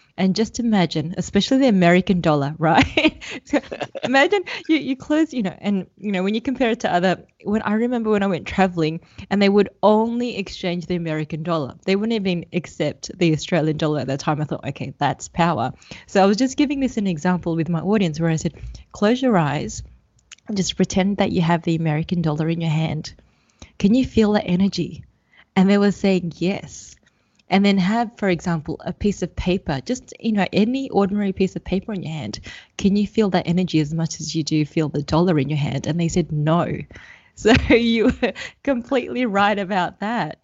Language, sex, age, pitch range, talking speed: English, female, 20-39, 160-205 Hz, 205 wpm